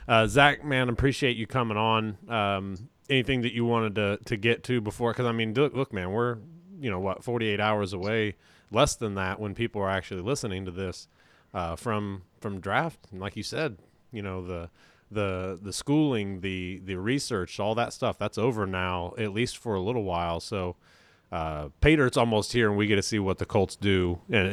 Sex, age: male, 30-49